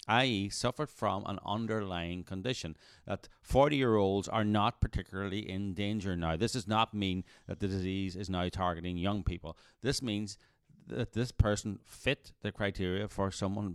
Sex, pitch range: male, 90-115 Hz